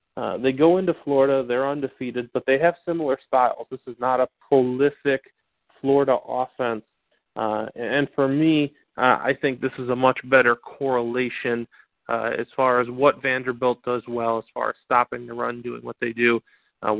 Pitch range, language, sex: 120-140 Hz, English, male